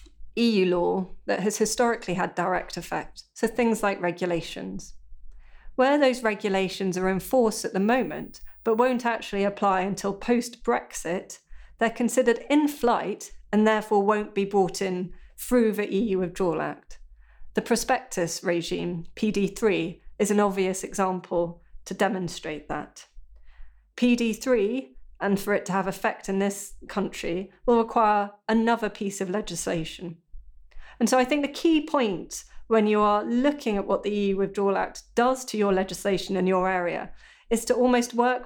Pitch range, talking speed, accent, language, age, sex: 190-230 Hz, 155 wpm, British, English, 40-59, female